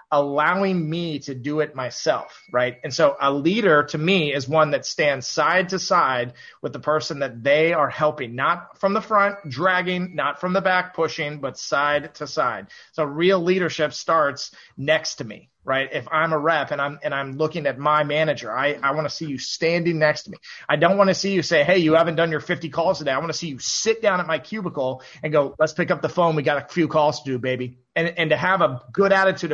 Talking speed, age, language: 240 wpm, 30-49, English